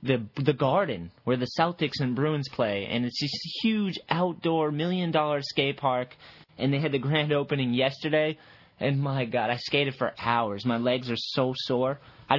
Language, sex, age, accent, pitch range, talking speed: English, male, 20-39, American, 125-155 Hz, 180 wpm